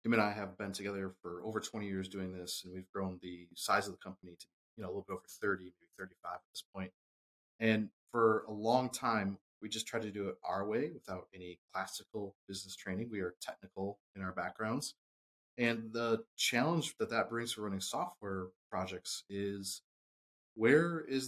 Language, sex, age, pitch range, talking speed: English, male, 30-49, 95-115 Hz, 195 wpm